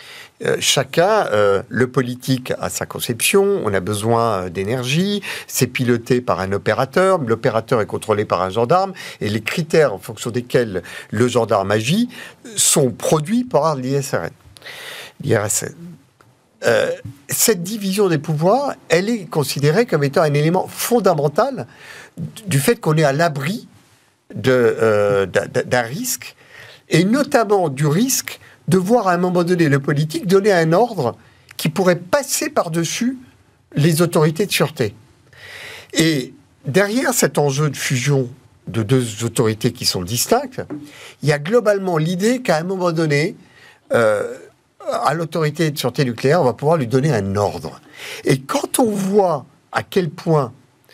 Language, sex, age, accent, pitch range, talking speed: French, male, 50-69, French, 125-195 Hz, 145 wpm